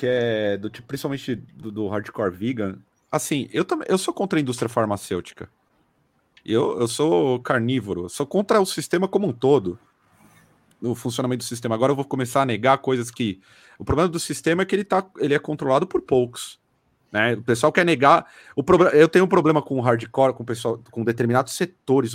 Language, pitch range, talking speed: Portuguese, 110-145 Hz, 180 wpm